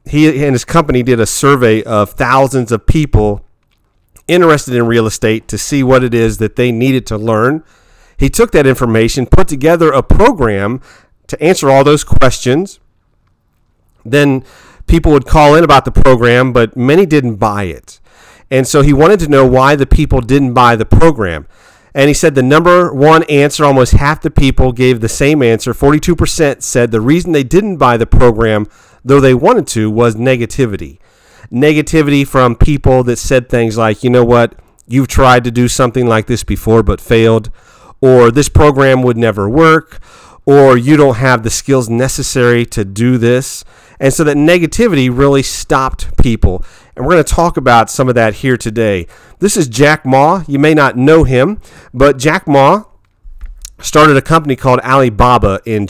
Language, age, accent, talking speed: English, 40-59, American, 180 wpm